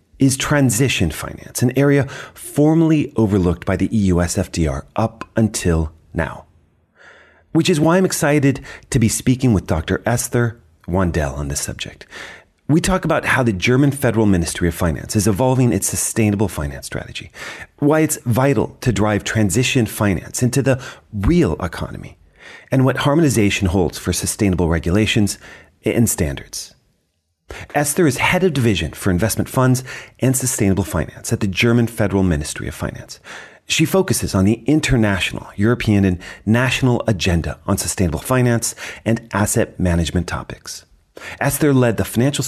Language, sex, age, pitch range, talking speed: English, male, 40-59, 90-130 Hz, 145 wpm